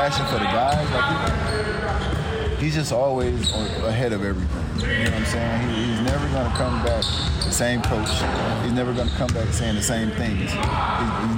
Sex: male